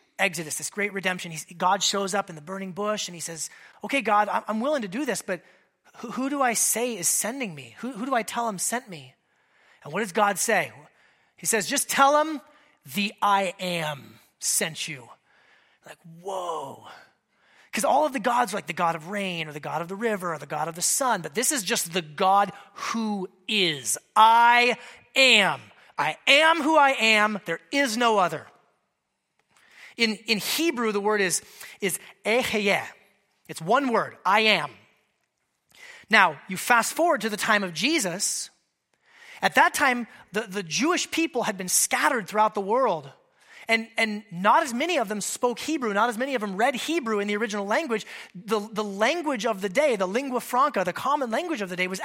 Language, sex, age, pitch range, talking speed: English, male, 30-49, 190-245 Hz, 195 wpm